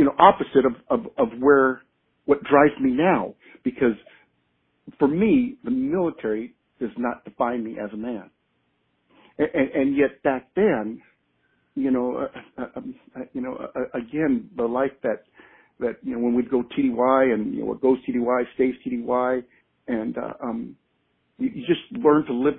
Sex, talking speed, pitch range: male, 180 wpm, 115-145 Hz